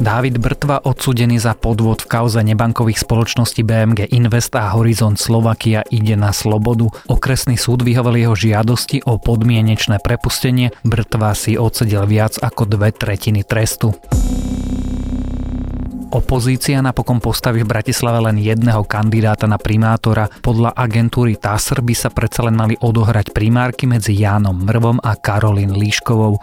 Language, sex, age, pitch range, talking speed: Slovak, male, 30-49, 105-120 Hz, 135 wpm